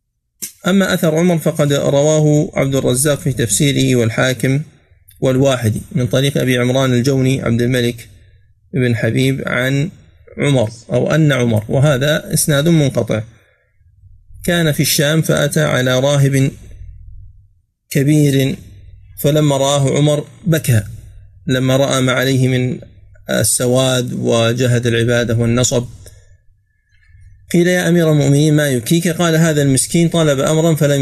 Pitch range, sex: 115-150 Hz, male